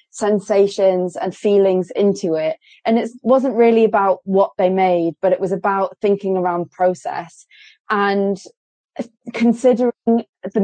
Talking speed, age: 130 wpm, 20-39